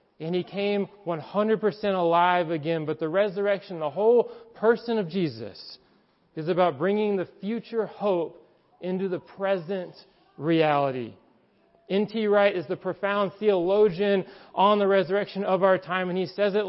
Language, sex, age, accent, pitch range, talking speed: English, male, 40-59, American, 170-215 Hz, 145 wpm